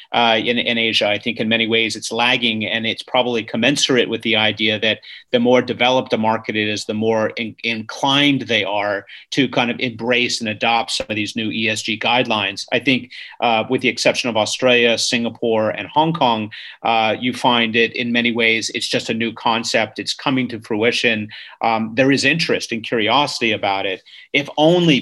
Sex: male